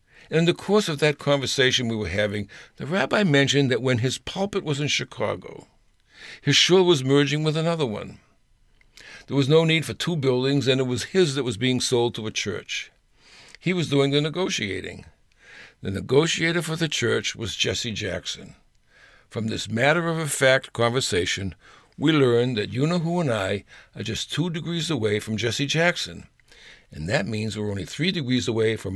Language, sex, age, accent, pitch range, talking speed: English, male, 60-79, American, 110-160 Hz, 175 wpm